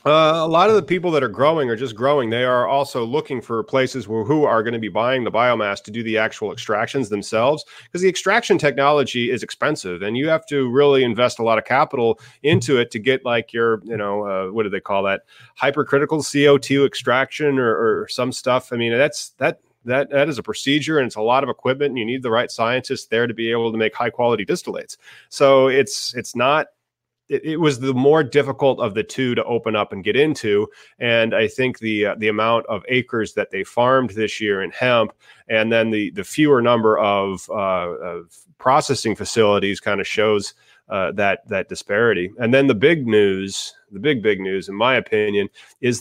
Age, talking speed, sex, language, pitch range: 30-49, 215 wpm, male, English, 110-140 Hz